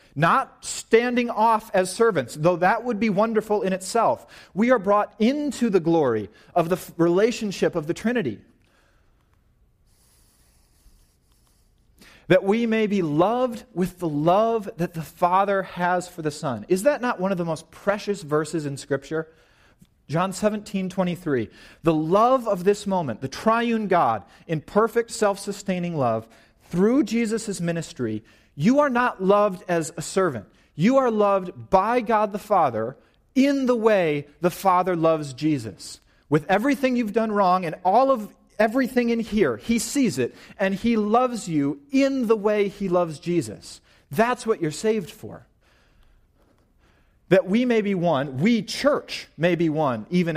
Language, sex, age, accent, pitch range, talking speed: English, male, 30-49, American, 160-225 Hz, 155 wpm